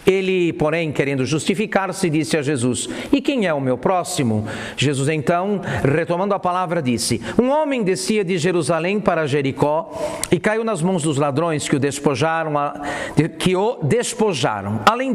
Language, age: Portuguese, 50-69